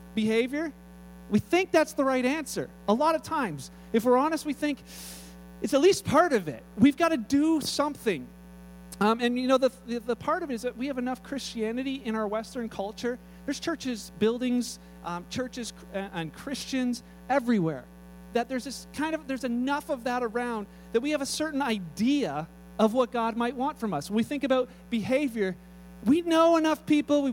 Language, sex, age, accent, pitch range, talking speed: English, male, 40-59, American, 185-270 Hz, 195 wpm